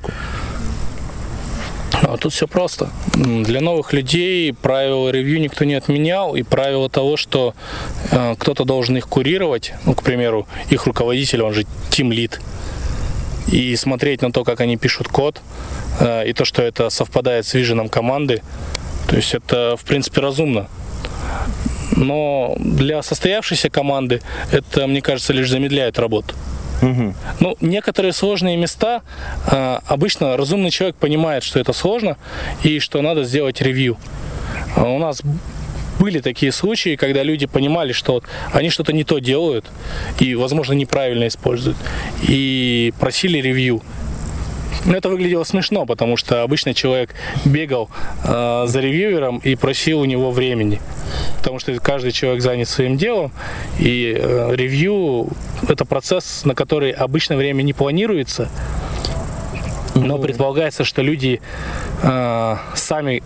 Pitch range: 120-150 Hz